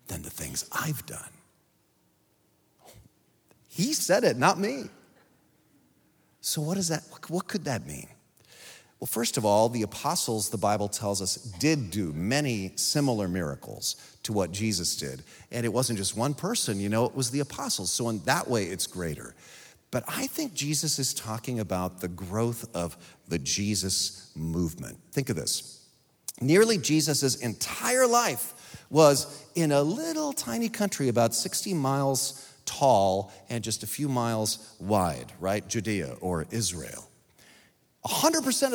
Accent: American